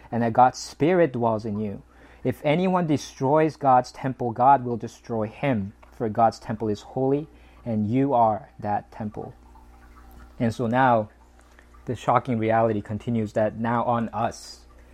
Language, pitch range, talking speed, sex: English, 100-130 Hz, 150 wpm, male